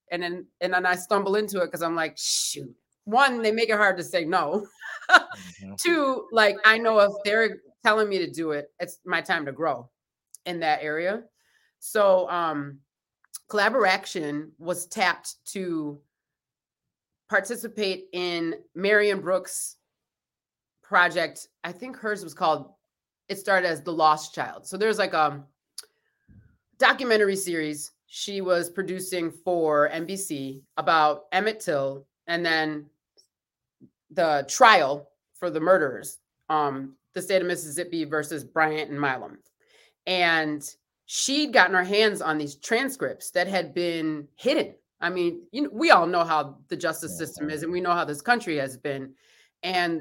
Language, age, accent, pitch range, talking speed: English, 30-49, American, 155-200 Hz, 150 wpm